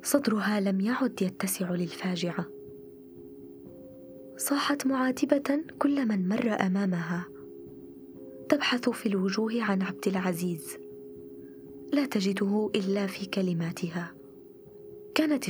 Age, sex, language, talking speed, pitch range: 20-39, female, Arabic, 90 wpm, 160-245 Hz